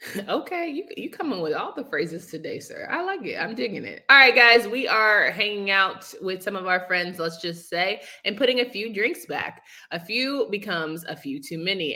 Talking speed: 215 wpm